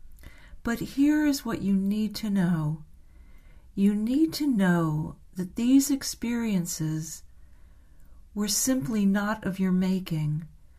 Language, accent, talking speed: English, American, 115 wpm